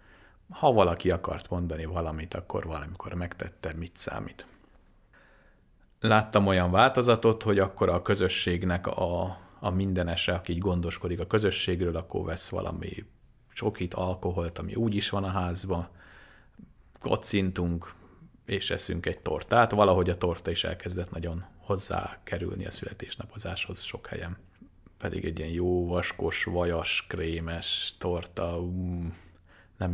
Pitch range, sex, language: 85-100 Hz, male, Hungarian